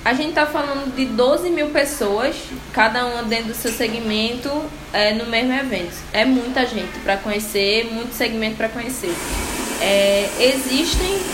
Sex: female